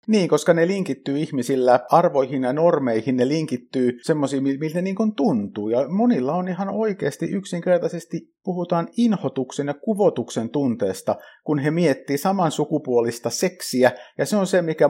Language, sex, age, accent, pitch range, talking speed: Finnish, male, 50-69, native, 125-170 Hz, 135 wpm